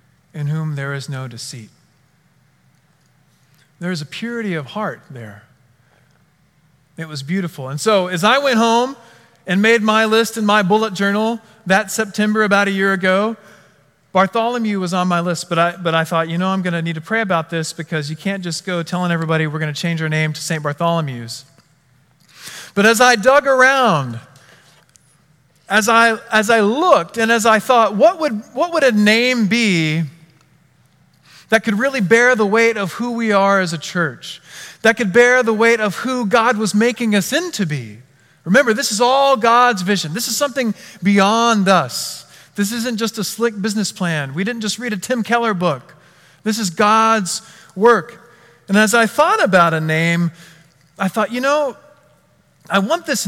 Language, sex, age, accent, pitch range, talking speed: English, male, 40-59, American, 160-225 Hz, 185 wpm